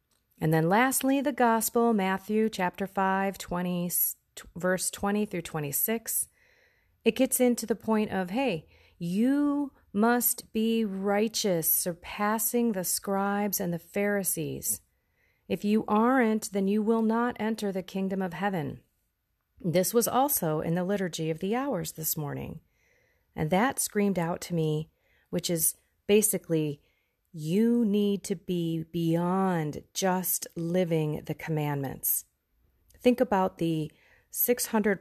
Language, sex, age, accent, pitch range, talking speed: English, female, 30-49, American, 165-215 Hz, 125 wpm